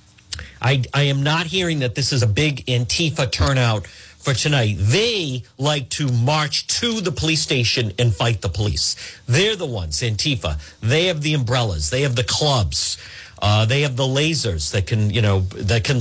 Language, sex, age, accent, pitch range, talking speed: English, male, 50-69, American, 100-150 Hz, 185 wpm